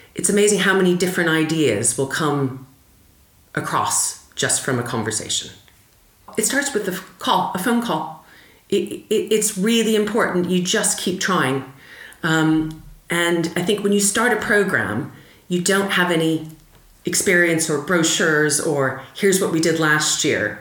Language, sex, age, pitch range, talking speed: English, female, 40-59, 135-185 Hz, 150 wpm